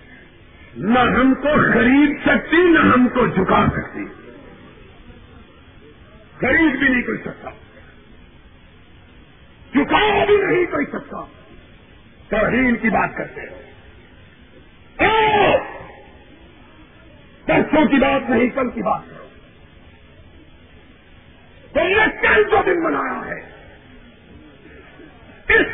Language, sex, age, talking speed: Urdu, male, 50-69, 90 wpm